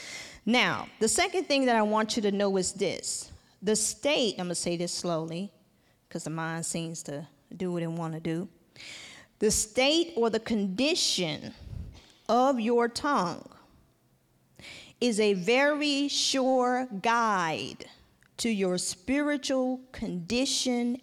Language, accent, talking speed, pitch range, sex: English, American, 135 wpm, 180-245 Hz, female